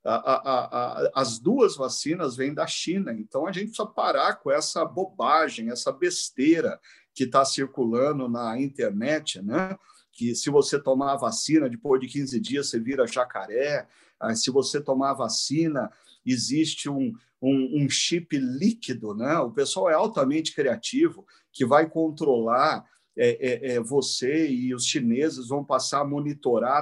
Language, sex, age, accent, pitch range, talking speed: Portuguese, male, 50-69, Brazilian, 130-190 Hz, 155 wpm